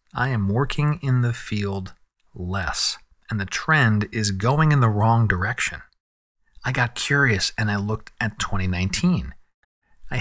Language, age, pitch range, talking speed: English, 40-59, 100-130 Hz, 145 wpm